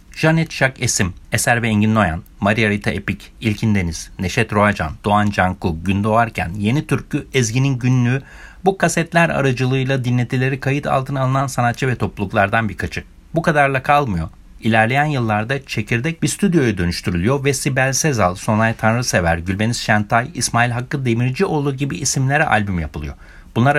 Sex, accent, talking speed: male, native, 140 wpm